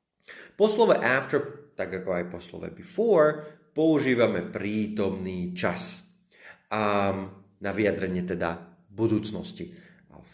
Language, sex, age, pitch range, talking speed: Slovak, male, 30-49, 95-135 Hz, 110 wpm